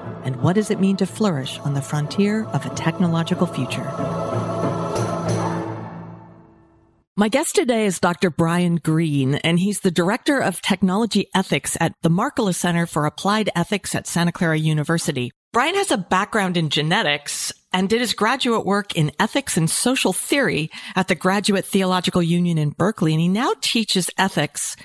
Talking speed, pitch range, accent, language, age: 160 wpm, 165-210 Hz, American, English, 40-59